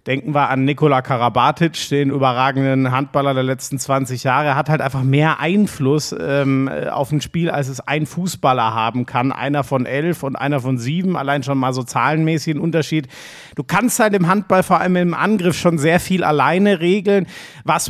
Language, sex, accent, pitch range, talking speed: German, male, German, 140-175 Hz, 190 wpm